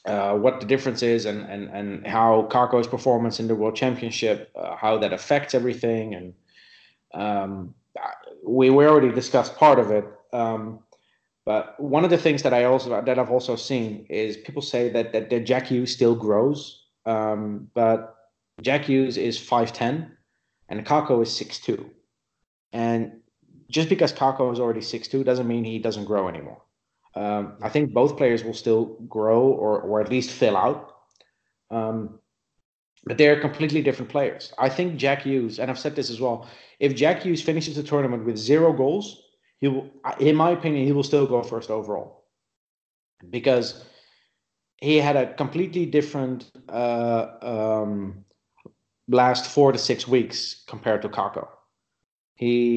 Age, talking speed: 30-49, 160 wpm